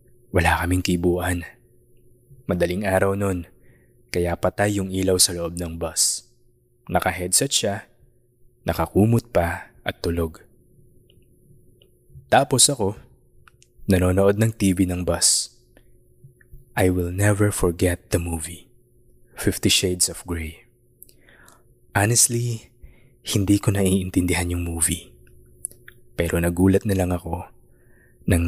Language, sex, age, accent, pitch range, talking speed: Filipino, male, 20-39, native, 90-115 Hz, 105 wpm